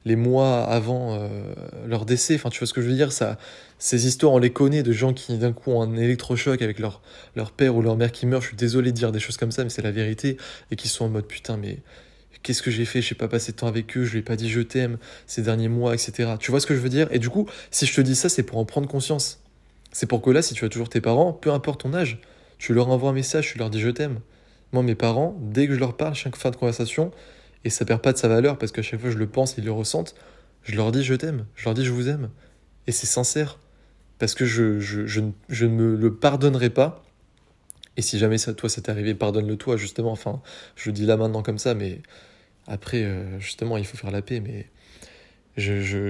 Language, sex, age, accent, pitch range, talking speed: French, male, 20-39, French, 110-130 Hz, 280 wpm